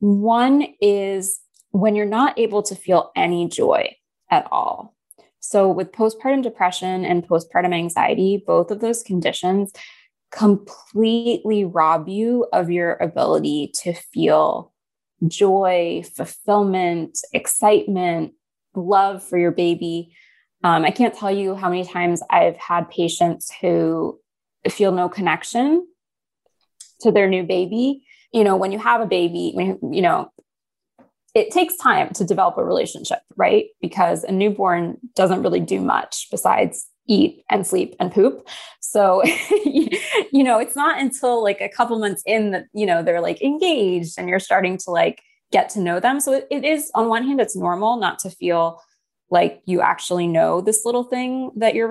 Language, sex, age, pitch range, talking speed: English, female, 20-39, 180-240 Hz, 155 wpm